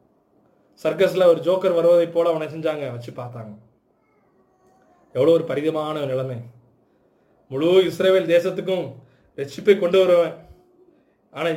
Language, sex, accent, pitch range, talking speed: Tamil, male, native, 155-200 Hz, 110 wpm